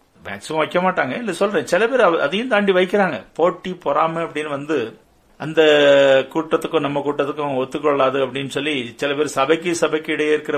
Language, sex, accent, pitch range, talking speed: Tamil, male, native, 140-165 Hz, 145 wpm